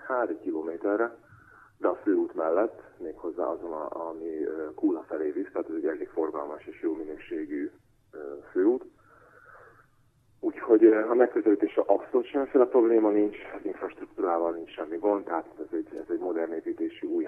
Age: 30-49